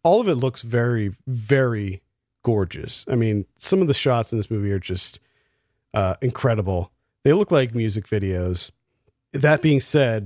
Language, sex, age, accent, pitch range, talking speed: English, male, 40-59, American, 110-135 Hz, 165 wpm